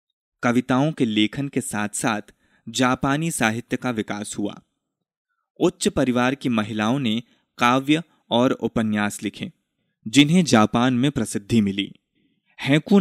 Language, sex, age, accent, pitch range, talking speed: Hindi, male, 20-39, native, 110-145 Hz, 120 wpm